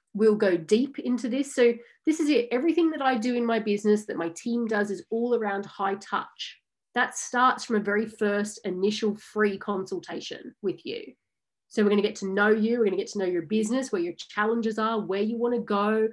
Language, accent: English, Australian